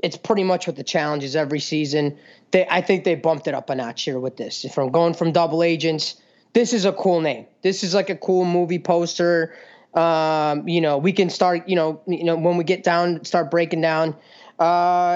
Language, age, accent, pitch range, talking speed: English, 20-39, American, 170-225 Hz, 220 wpm